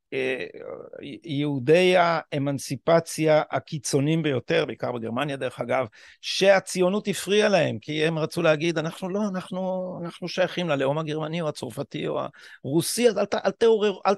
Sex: male